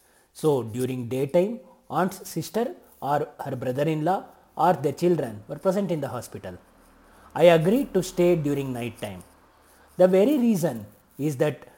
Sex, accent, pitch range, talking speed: male, native, 130-180 Hz, 160 wpm